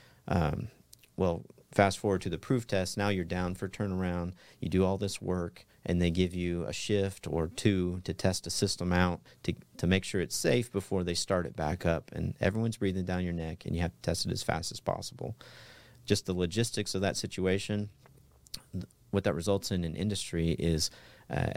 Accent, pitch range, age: American, 85-100 Hz, 40-59